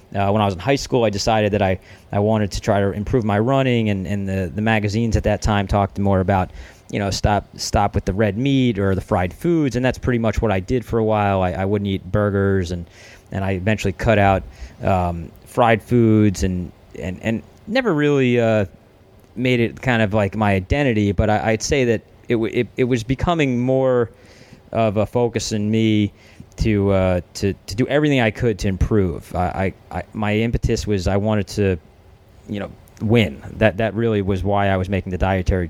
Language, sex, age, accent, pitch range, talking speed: English, male, 30-49, American, 95-115 Hz, 215 wpm